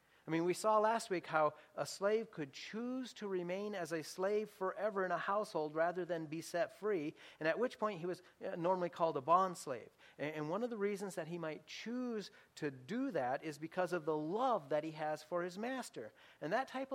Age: 40-59